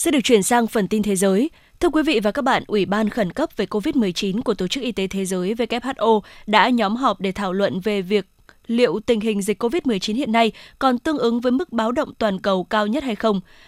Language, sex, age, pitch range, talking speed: Vietnamese, female, 20-39, 205-255 Hz, 245 wpm